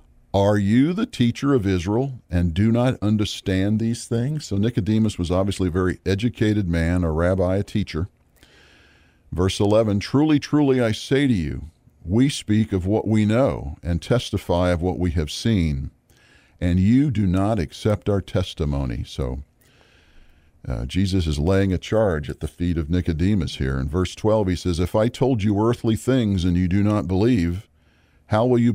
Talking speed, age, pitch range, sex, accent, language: 175 wpm, 50-69, 85-115 Hz, male, American, English